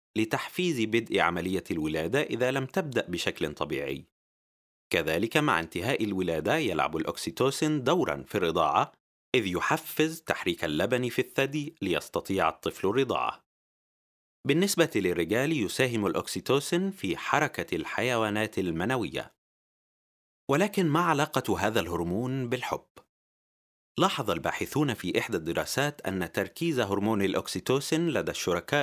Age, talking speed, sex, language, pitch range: 30-49, 110 wpm, male, Arabic, 100-150 Hz